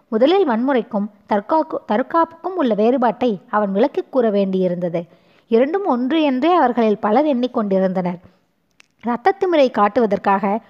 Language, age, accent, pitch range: Tamil, 20-39, native, 205-295 Hz